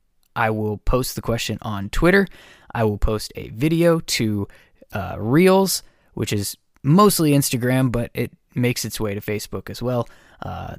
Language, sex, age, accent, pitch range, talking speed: English, male, 20-39, American, 115-170 Hz, 160 wpm